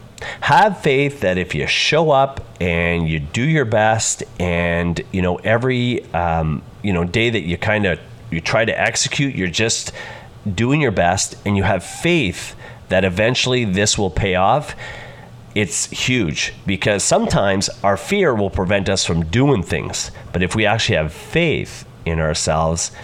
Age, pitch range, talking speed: 30-49, 90-125 Hz, 165 wpm